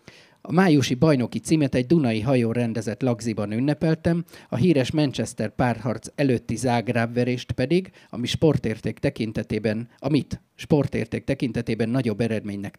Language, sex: Hungarian, male